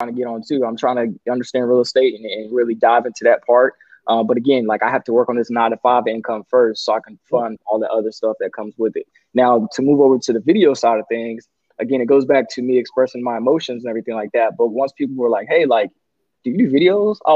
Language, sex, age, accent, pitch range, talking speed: English, male, 20-39, American, 120-140 Hz, 275 wpm